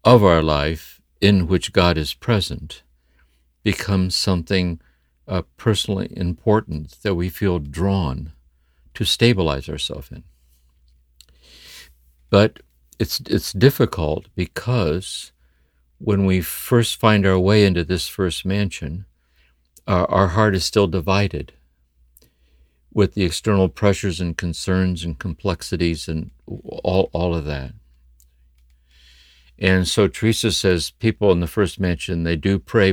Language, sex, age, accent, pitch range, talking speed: English, male, 60-79, American, 65-95 Hz, 120 wpm